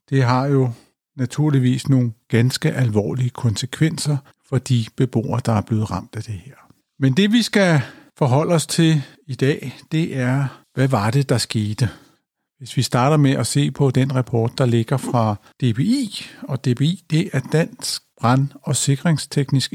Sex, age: male, 50-69